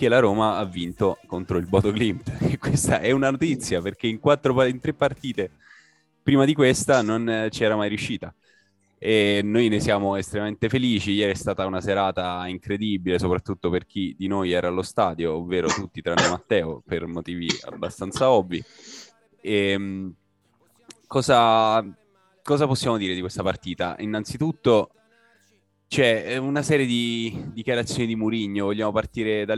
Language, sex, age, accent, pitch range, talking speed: Italian, male, 20-39, native, 90-115 Hz, 150 wpm